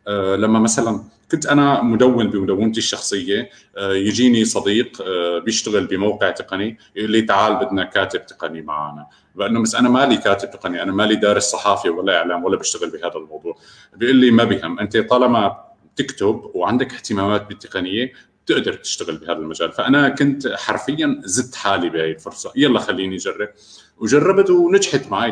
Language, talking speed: Arabic, 155 wpm